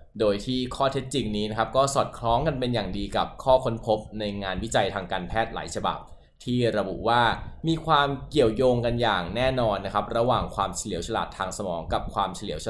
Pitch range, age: 100-130 Hz, 20-39